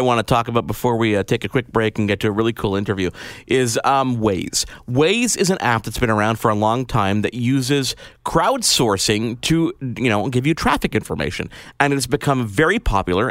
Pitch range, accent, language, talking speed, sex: 100-140 Hz, American, English, 215 wpm, male